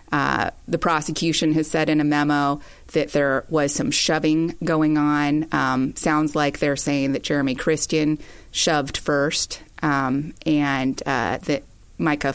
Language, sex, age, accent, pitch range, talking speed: English, female, 30-49, American, 140-155 Hz, 145 wpm